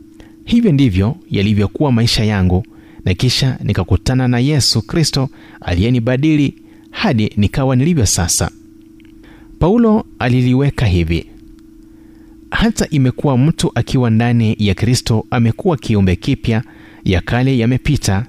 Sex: male